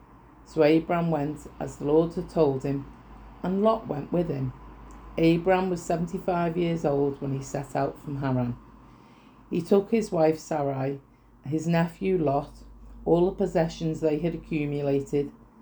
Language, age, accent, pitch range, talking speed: English, 40-59, British, 140-170 Hz, 150 wpm